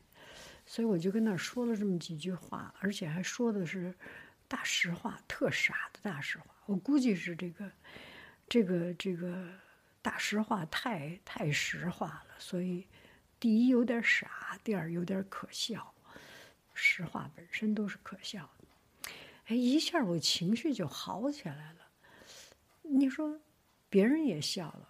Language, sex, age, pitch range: English, female, 60-79, 175-240 Hz